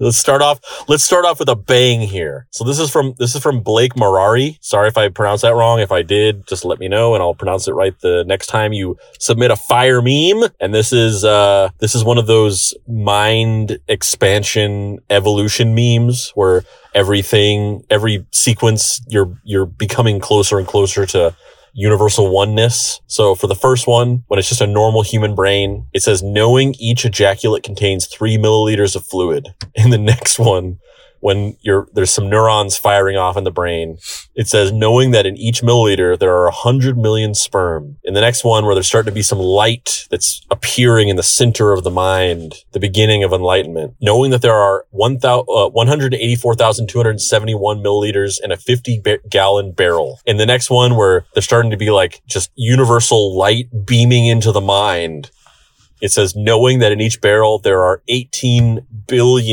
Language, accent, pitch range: English, American, 100-120 Hz